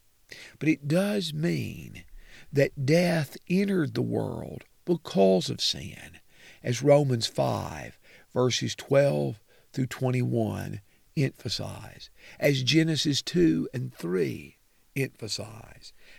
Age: 50-69